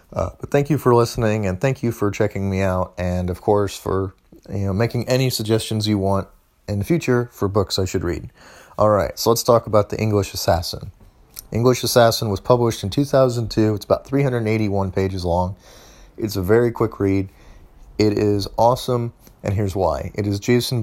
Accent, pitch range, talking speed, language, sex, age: American, 95-115 Hz, 185 wpm, English, male, 30-49